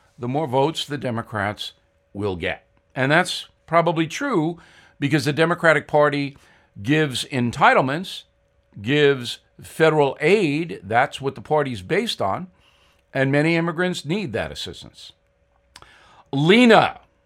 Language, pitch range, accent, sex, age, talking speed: English, 120-185 Hz, American, male, 60-79, 115 wpm